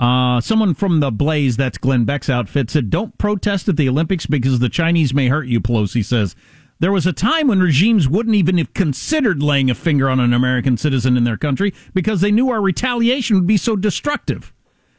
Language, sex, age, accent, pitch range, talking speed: English, male, 50-69, American, 135-205 Hz, 210 wpm